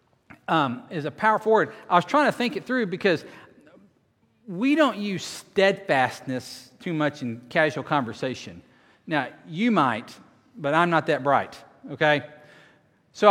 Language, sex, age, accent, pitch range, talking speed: English, male, 40-59, American, 160-225 Hz, 145 wpm